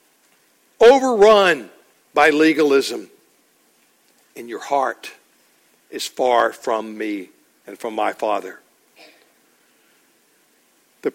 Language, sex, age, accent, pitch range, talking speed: English, male, 60-79, American, 140-195 Hz, 80 wpm